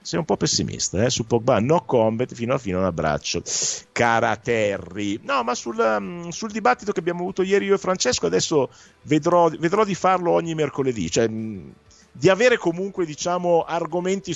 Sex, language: male, Italian